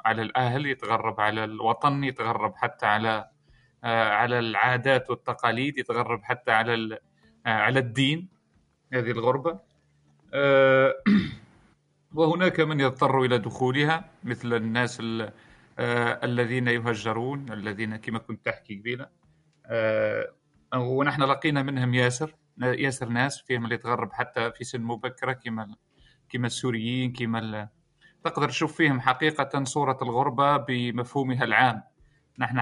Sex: male